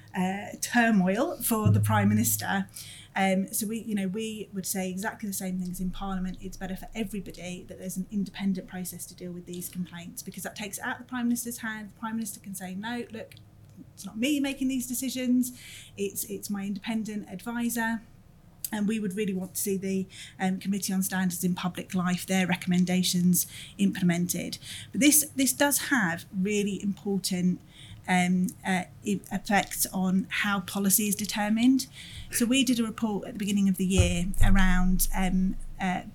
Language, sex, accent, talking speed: English, female, British, 180 wpm